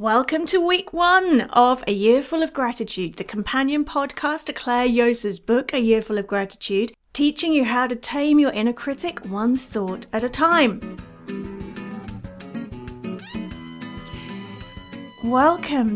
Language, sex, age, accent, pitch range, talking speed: English, female, 40-59, British, 220-295 Hz, 135 wpm